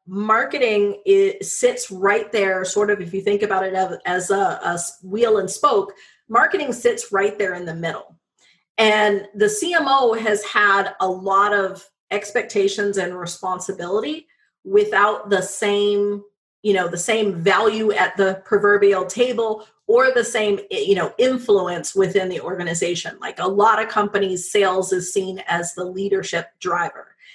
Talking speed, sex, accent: 150 wpm, female, American